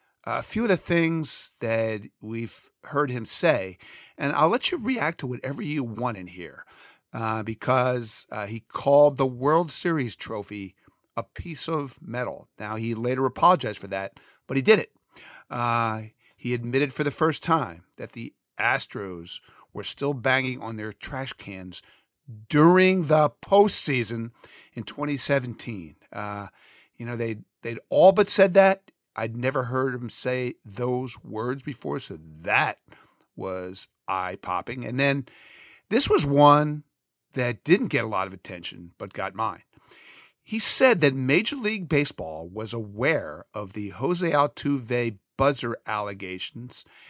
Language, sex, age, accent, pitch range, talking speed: English, male, 50-69, American, 110-145 Hz, 145 wpm